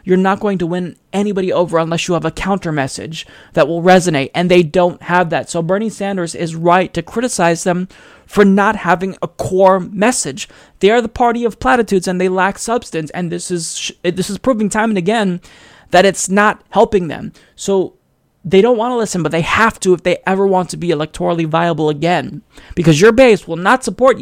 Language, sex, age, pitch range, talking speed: English, male, 20-39, 175-220 Hz, 210 wpm